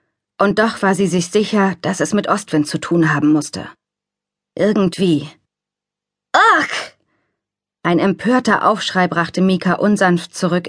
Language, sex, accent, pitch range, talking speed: German, female, German, 175-225 Hz, 130 wpm